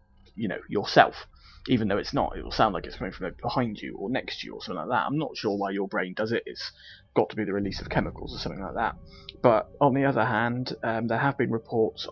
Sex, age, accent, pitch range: male, 20-39, British, 105-130 Hz